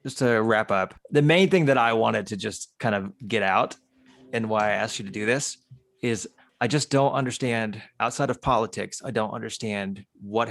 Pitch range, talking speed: 100-130 Hz, 205 wpm